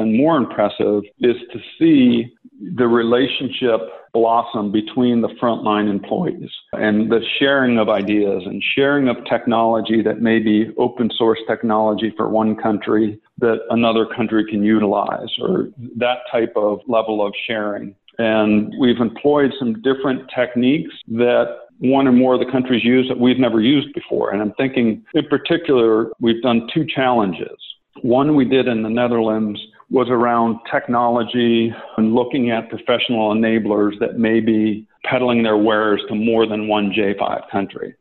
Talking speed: 150 wpm